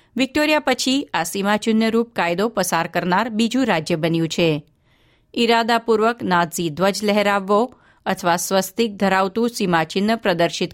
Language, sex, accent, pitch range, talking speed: Gujarati, female, native, 185-255 Hz, 110 wpm